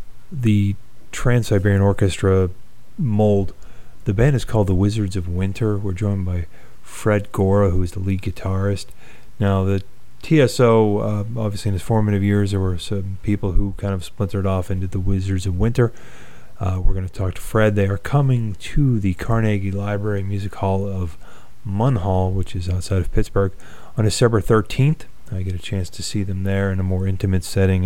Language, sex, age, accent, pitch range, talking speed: English, male, 30-49, American, 95-105 Hz, 180 wpm